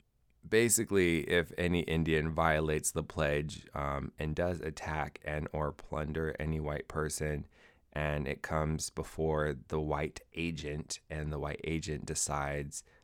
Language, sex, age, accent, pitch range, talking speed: English, male, 20-39, American, 75-90 Hz, 135 wpm